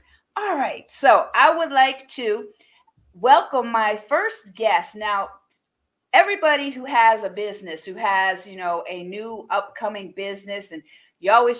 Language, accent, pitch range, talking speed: English, American, 205-255 Hz, 145 wpm